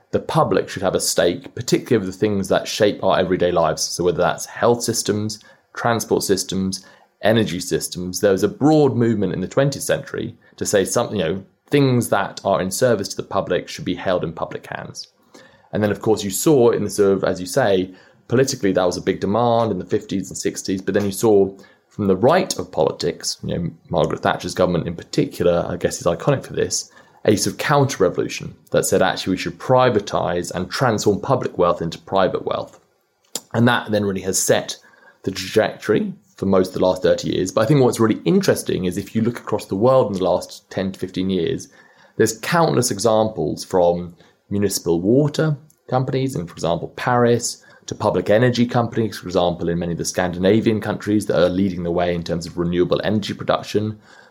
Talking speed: 200 wpm